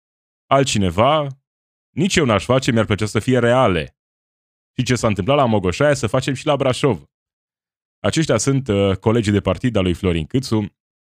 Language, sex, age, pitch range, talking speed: Romanian, male, 20-39, 90-125 Hz, 165 wpm